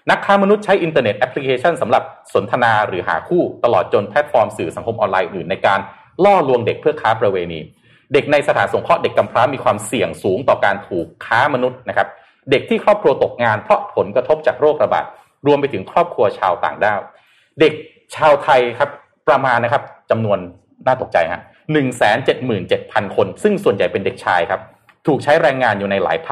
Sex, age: male, 30-49